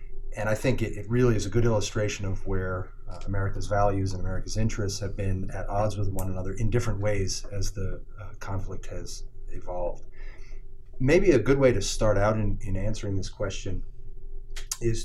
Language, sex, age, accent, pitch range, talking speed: English, male, 30-49, American, 95-120 Hz, 185 wpm